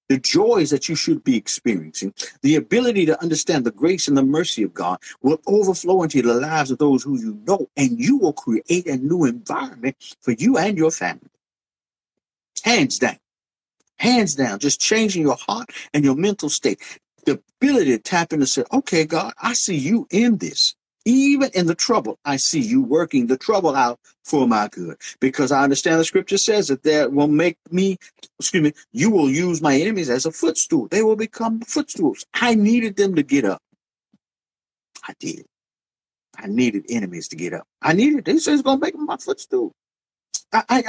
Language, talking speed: English, 190 wpm